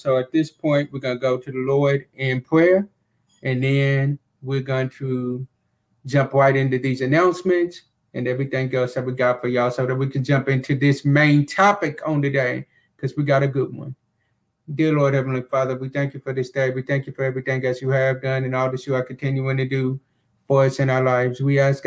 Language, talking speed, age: English, 225 wpm, 30-49